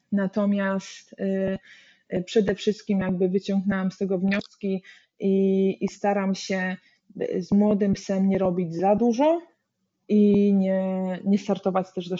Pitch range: 185-210 Hz